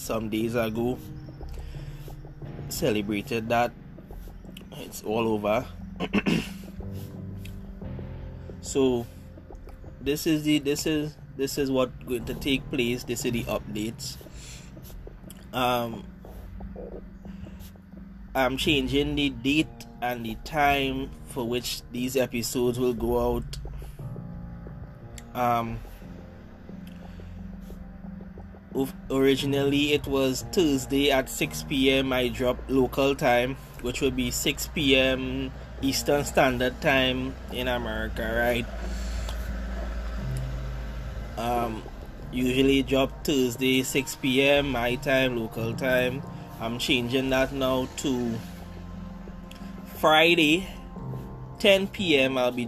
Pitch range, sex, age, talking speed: 115-140 Hz, male, 20-39, 95 wpm